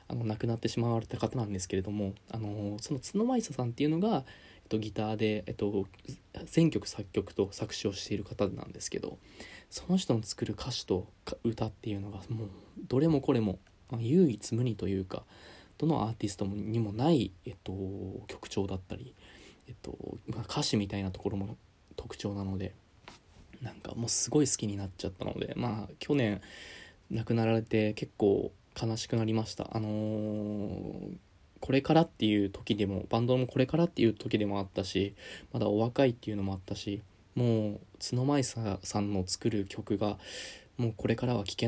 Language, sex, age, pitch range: Japanese, male, 20-39, 100-125 Hz